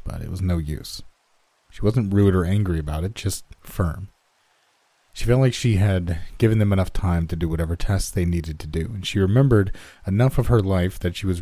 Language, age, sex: English, 40-59, male